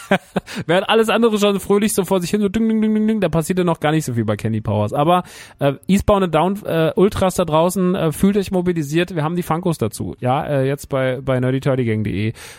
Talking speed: 240 wpm